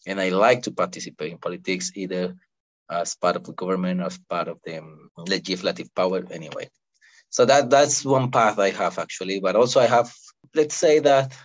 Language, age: English, 20-39